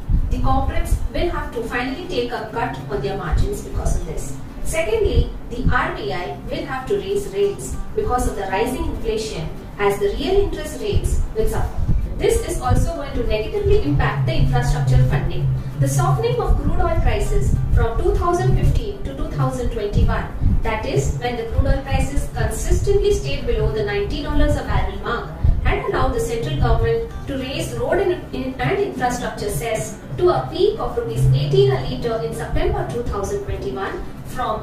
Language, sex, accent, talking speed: English, female, Indian, 145 wpm